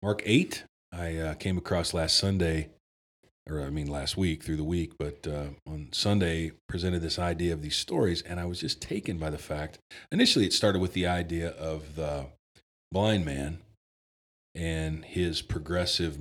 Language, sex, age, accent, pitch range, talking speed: English, male, 40-59, American, 80-105 Hz, 175 wpm